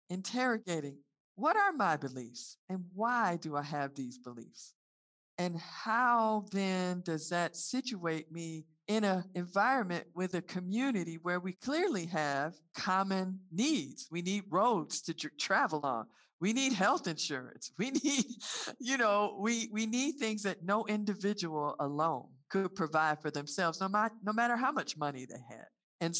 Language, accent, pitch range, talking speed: English, American, 150-195 Hz, 155 wpm